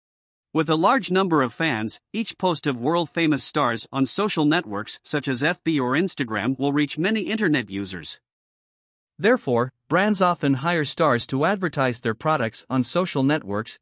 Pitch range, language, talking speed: 125-175 Hz, English, 155 wpm